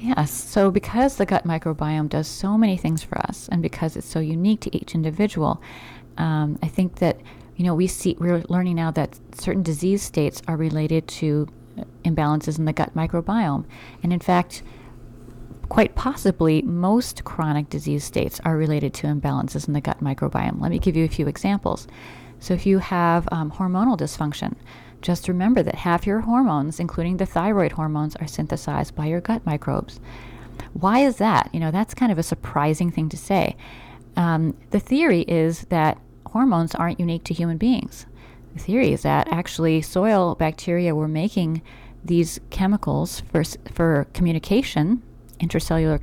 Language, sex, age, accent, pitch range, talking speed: English, female, 30-49, American, 150-185 Hz, 170 wpm